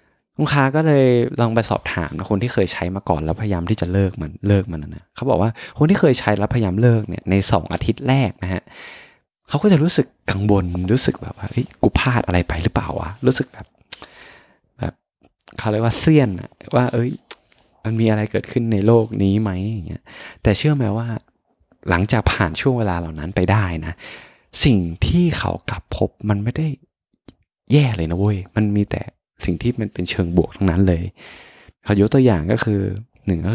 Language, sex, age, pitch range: Thai, male, 20-39, 85-110 Hz